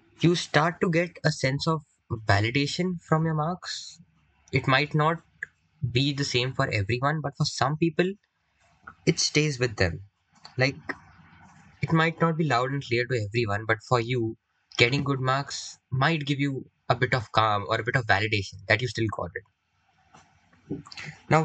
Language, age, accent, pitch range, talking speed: English, 10-29, Indian, 115-155 Hz, 170 wpm